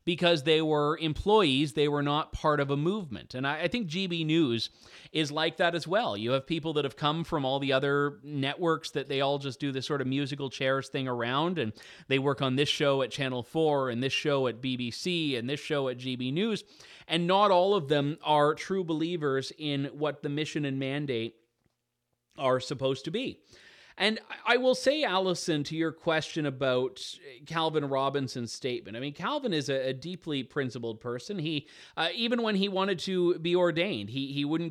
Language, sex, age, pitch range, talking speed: English, male, 30-49, 130-165 Hz, 200 wpm